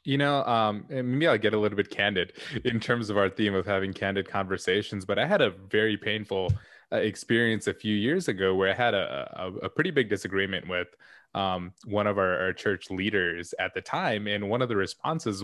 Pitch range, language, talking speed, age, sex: 100-125 Hz, English, 220 wpm, 20-39, male